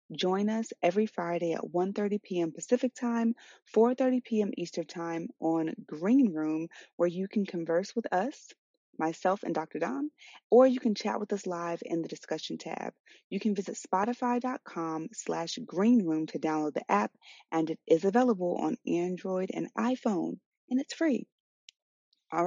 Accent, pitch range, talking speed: American, 170-240 Hz, 165 wpm